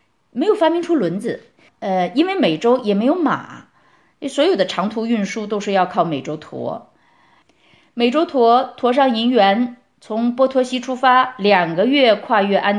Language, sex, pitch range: Chinese, female, 185-260 Hz